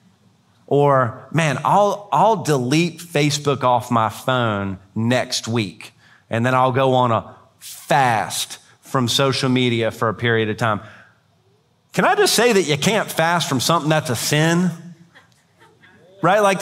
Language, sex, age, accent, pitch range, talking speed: English, male, 30-49, American, 125-175 Hz, 150 wpm